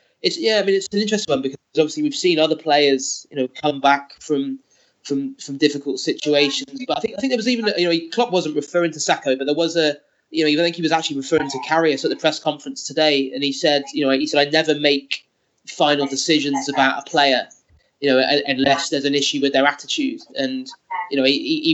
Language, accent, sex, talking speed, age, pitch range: English, British, male, 235 wpm, 20-39, 135-160 Hz